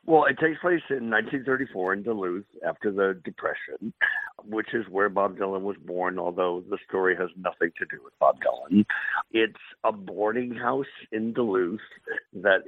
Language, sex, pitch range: English, male, 90-105 Hz